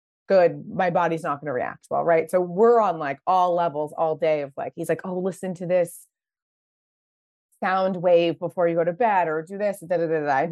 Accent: American